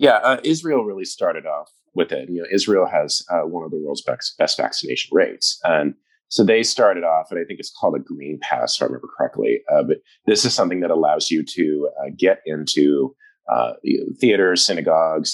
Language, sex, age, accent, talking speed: English, male, 30-49, American, 215 wpm